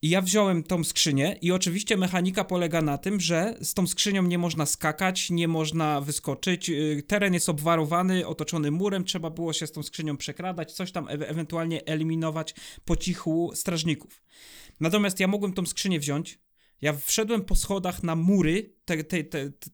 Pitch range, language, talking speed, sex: 160-190 Hz, Polish, 175 wpm, male